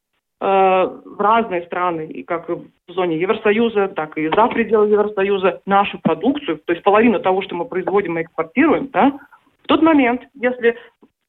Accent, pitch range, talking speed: native, 200-260 Hz, 150 wpm